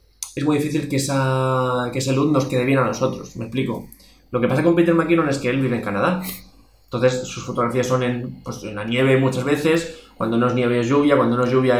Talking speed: 245 wpm